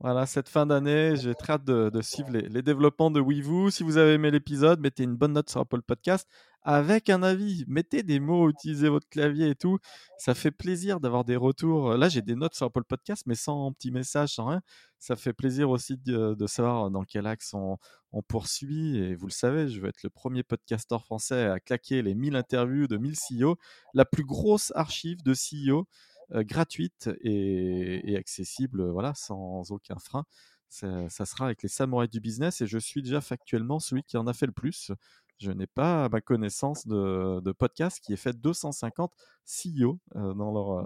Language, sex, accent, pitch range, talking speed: French, male, French, 110-150 Hz, 200 wpm